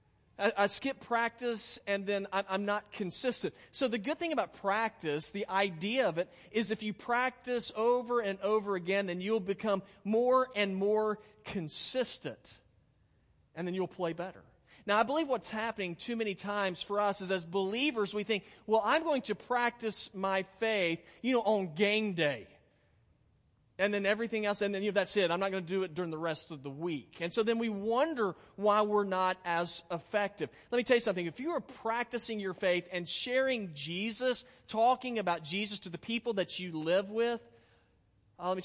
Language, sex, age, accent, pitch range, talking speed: English, male, 40-59, American, 175-225 Hz, 195 wpm